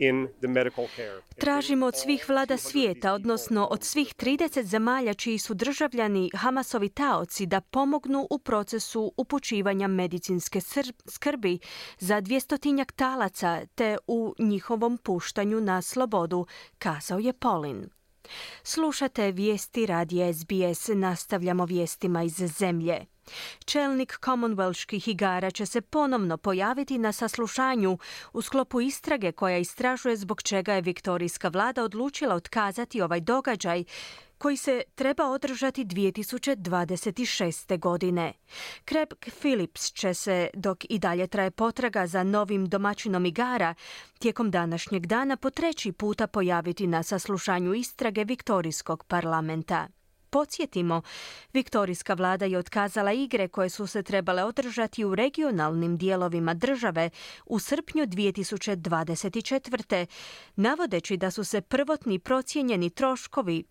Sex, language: female, Croatian